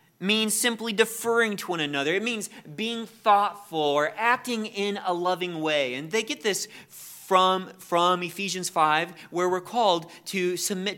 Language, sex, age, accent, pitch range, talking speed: English, male, 30-49, American, 155-205 Hz, 160 wpm